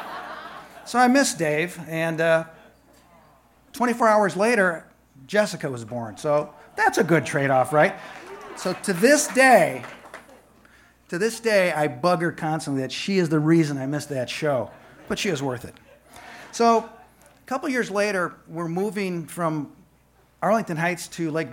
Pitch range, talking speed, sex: 125-175 Hz, 155 wpm, male